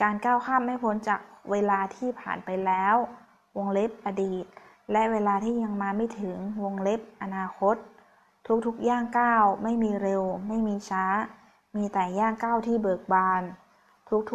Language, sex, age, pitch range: Thai, female, 20-39, 190-230 Hz